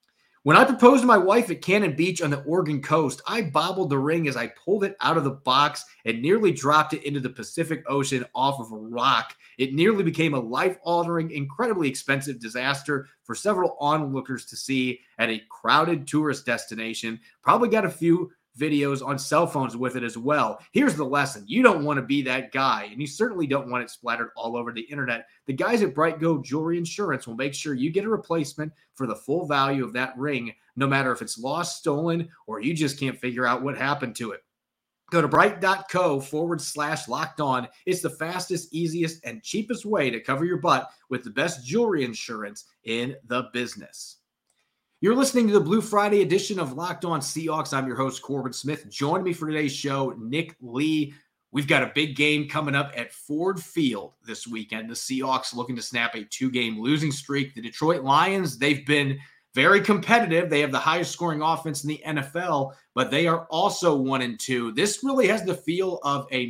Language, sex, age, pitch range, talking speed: English, male, 30-49, 130-170 Hz, 205 wpm